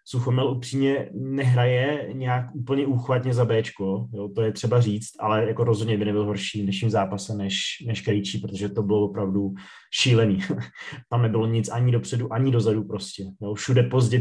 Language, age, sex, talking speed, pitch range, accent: Czech, 20-39, male, 170 wpm, 115-125 Hz, native